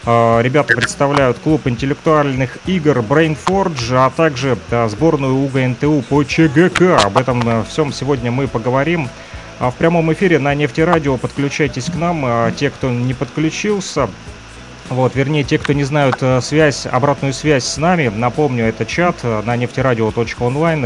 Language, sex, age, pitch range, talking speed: Russian, male, 30-49, 115-150 Hz, 135 wpm